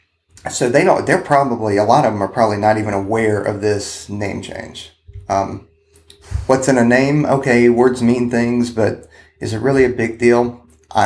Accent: American